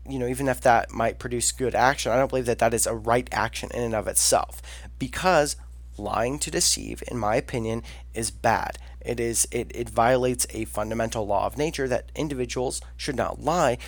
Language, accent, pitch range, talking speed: English, American, 105-140 Hz, 200 wpm